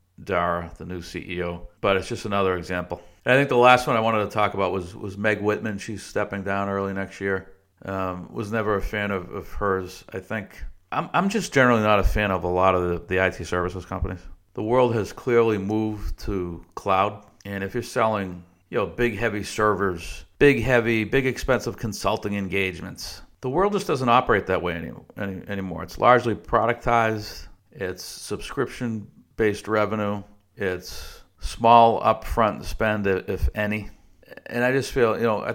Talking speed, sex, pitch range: 180 wpm, male, 95-110 Hz